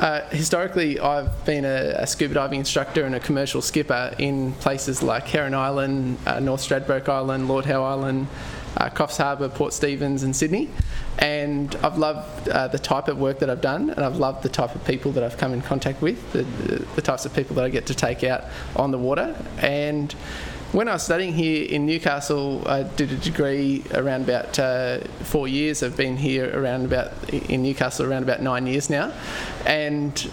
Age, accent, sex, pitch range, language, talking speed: 20-39, Australian, male, 135-150 Hz, English, 200 wpm